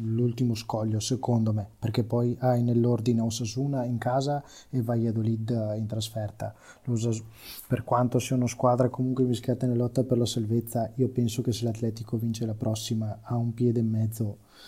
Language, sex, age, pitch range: Italian, male, 20-39, 115-130 Hz